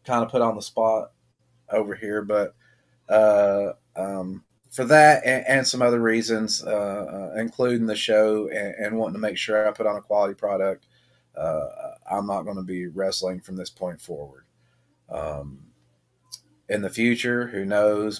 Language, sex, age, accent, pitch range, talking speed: English, male, 30-49, American, 95-120 Hz, 170 wpm